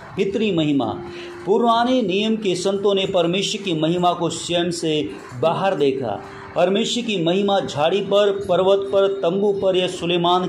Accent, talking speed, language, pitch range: Indian, 150 wpm, English, 155-195 Hz